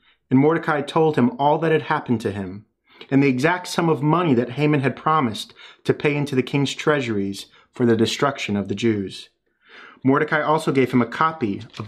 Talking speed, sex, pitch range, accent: 195 wpm, male, 115-155 Hz, American